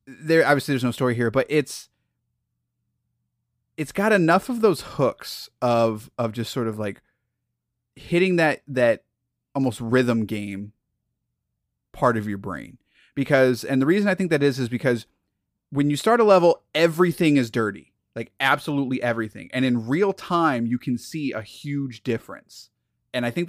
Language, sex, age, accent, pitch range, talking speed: English, male, 30-49, American, 115-155 Hz, 165 wpm